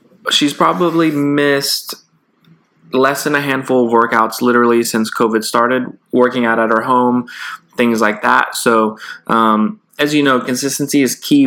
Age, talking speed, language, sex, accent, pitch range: 20-39, 150 wpm, English, male, American, 115-130 Hz